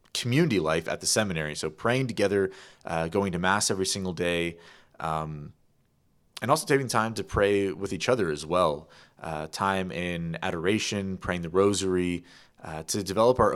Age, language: 30-49, English